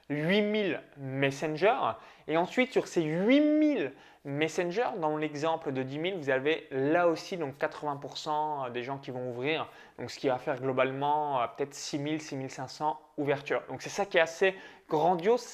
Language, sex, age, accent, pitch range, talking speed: French, male, 20-39, French, 140-185 Hz, 165 wpm